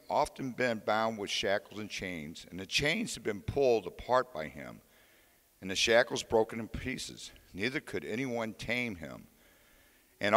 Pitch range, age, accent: 95-115 Hz, 50-69, American